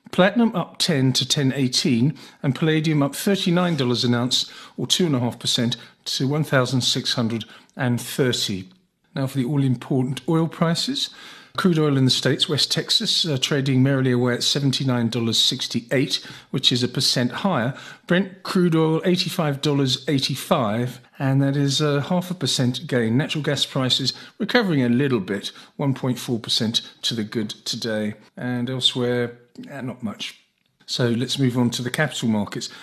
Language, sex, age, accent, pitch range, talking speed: English, male, 50-69, British, 125-165 Hz, 135 wpm